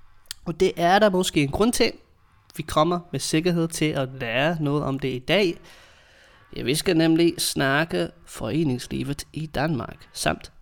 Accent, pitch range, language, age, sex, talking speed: Danish, 130-165 Hz, English, 20-39, male, 165 wpm